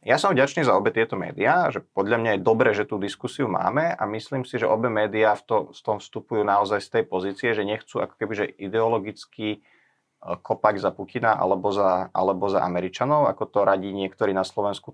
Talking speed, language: 180 wpm, Slovak